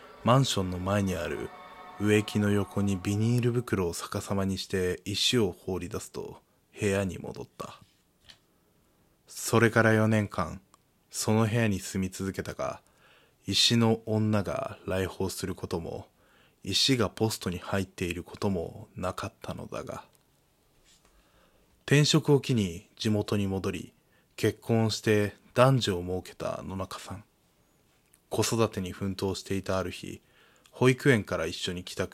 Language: Japanese